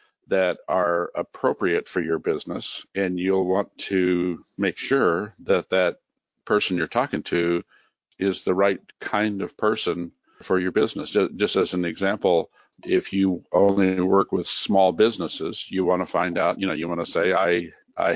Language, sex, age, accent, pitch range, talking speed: English, male, 50-69, American, 90-110 Hz, 170 wpm